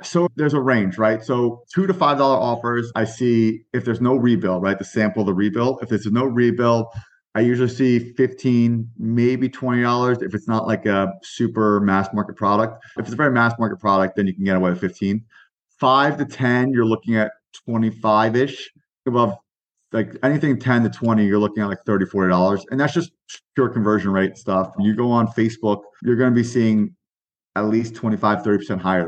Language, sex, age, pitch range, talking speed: English, male, 30-49, 105-125 Hz, 195 wpm